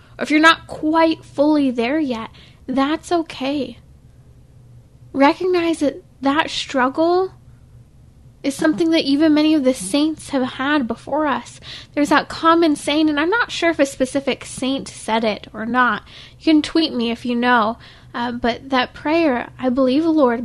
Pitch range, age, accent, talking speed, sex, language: 245-310 Hz, 10-29, American, 165 wpm, female, English